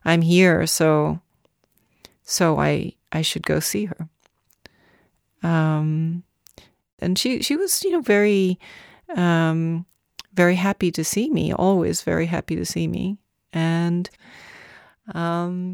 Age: 40-59